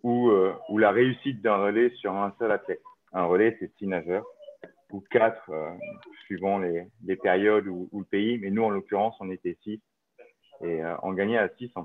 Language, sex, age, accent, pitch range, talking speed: French, male, 30-49, French, 100-125 Hz, 205 wpm